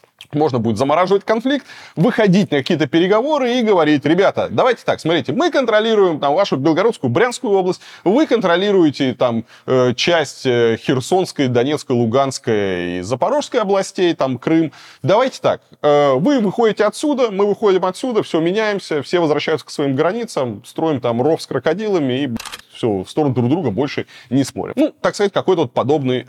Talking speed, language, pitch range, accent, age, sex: 145 wpm, Russian, 115-195 Hz, native, 30-49, male